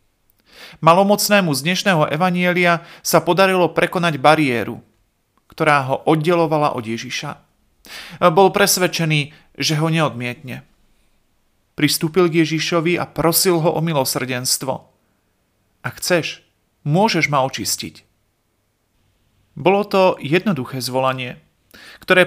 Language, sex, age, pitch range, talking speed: Slovak, male, 40-59, 125-175 Hz, 95 wpm